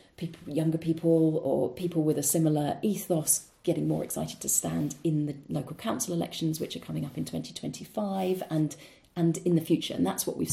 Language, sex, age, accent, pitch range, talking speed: English, female, 40-59, British, 140-175 Hz, 190 wpm